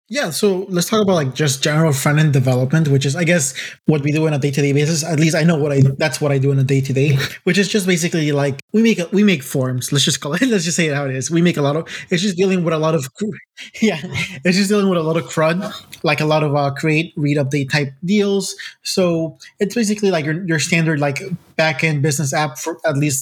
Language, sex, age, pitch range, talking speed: English, male, 20-39, 150-180 Hz, 270 wpm